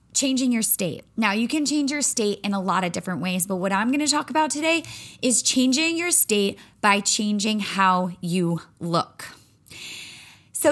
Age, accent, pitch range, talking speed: 20-39, American, 200-265 Hz, 185 wpm